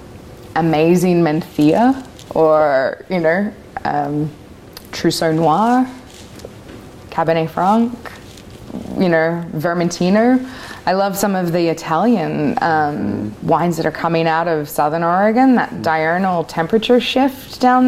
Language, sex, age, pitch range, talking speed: English, female, 20-39, 155-180 Hz, 110 wpm